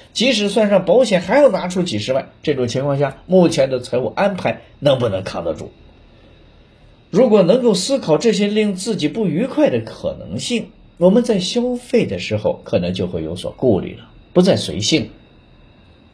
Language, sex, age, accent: Chinese, male, 50-69, native